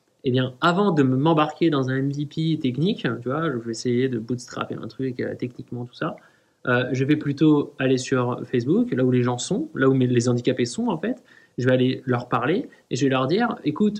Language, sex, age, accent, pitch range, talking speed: French, male, 20-39, French, 125-165 Hz, 225 wpm